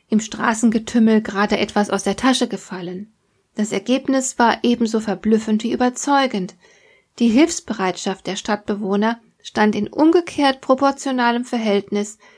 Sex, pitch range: female, 205-260 Hz